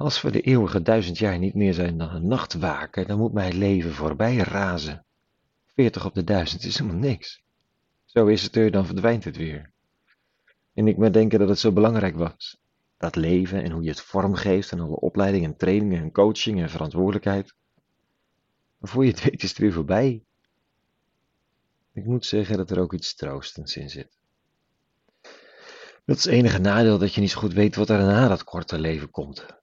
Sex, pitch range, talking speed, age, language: male, 85-105 Hz, 195 wpm, 40-59, Dutch